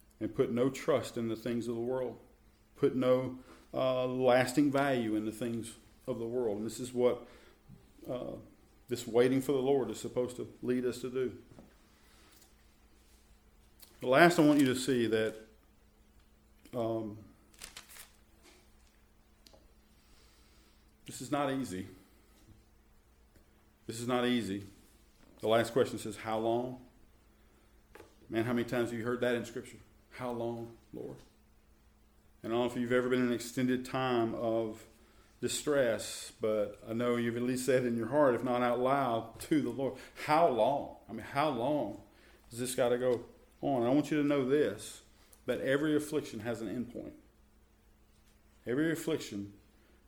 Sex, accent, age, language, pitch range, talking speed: male, American, 40-59, English, 110-130 Hz, 155 wpm